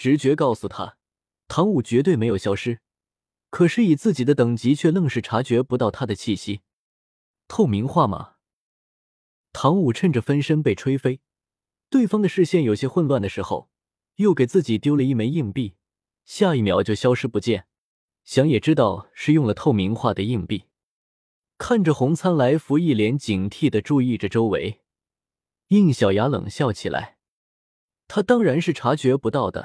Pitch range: 105-155 Hz